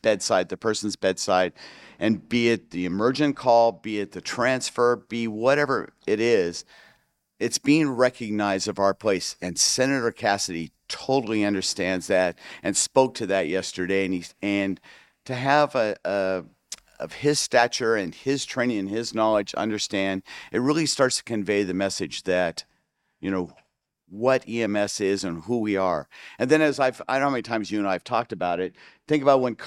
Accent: American